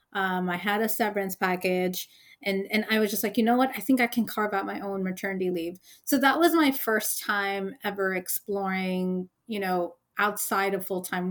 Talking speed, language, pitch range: 205 wpm, English, 195-240 Hz